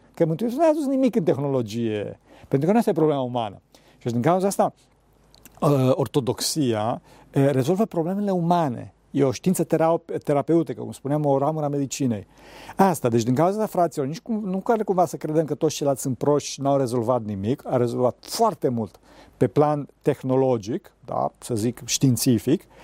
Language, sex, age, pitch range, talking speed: Romanian, male, 50-69, 130-180 Hz, 175 wpm